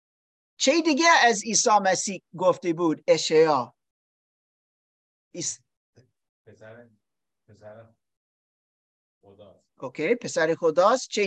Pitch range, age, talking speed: 165-255 Hz, 50-69, 65 wpm